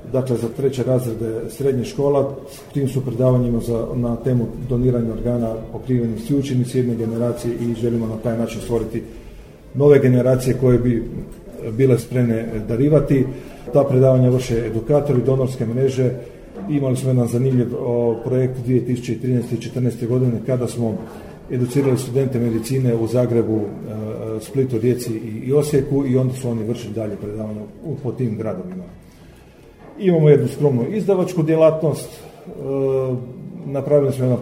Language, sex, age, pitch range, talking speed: Croatian, male, 40-59, 115-135 Hz, 135 wpm